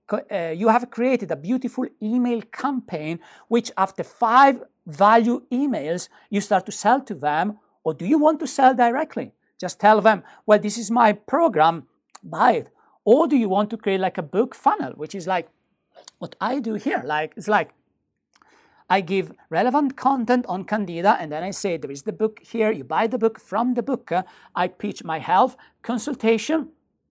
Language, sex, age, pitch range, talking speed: English, male, 50-69, 195-260 Hz, 185 wpm